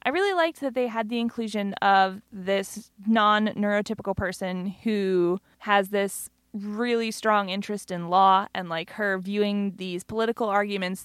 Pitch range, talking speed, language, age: 185-220 Hz, 145 wpm, English, 20-39